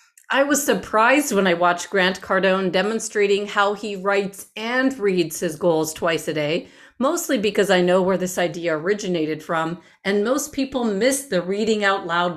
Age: 40-59